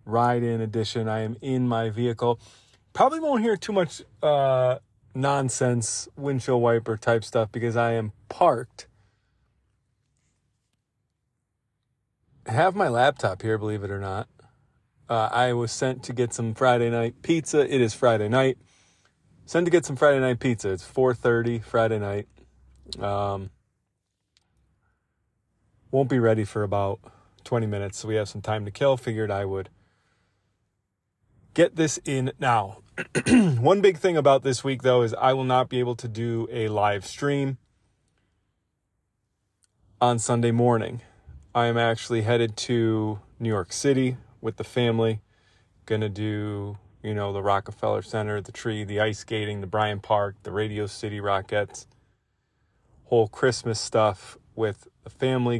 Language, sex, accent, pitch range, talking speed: English, male, American, 105-125 Hz, 145 wpm